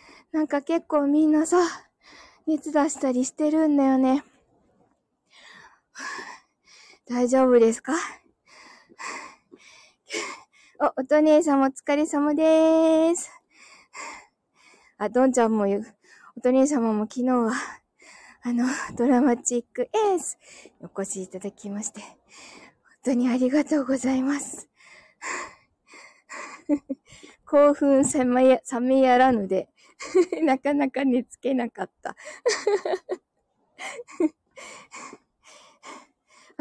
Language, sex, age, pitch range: Japanese, female, 20-39, 245-315 Hz